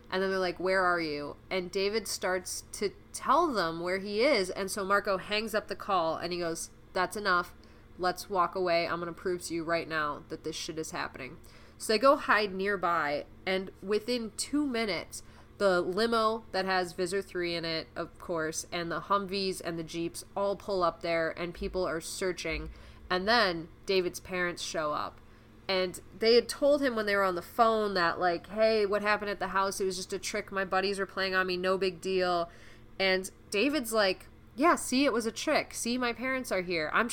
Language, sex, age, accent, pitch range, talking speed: English, female, 20-39, American, 175-215 Hz, 210 wpm